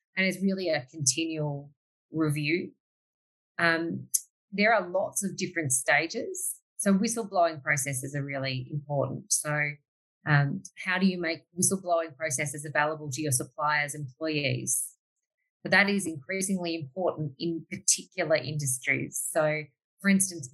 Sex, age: female, 30-49